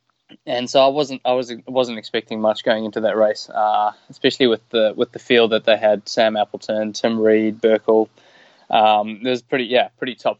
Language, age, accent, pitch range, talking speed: English, 20-39, Australian, 115-130 Hz, 200 wpm